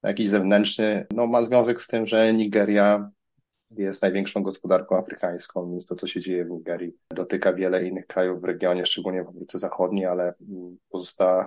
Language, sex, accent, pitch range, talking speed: Polish, male, native, 90-100 Hz, 165 wpm